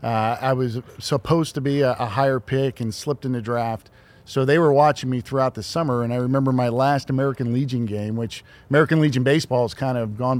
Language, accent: English, American